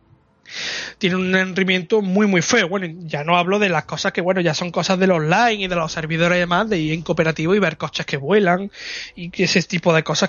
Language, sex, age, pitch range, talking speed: Spanish, male, 20-39, 175-220 Hz, 240 wpm